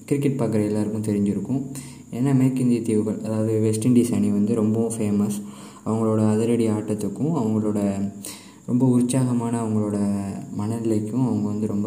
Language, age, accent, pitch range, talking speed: Tamil, 20-39, native, 105-125 Hz, 125 wpm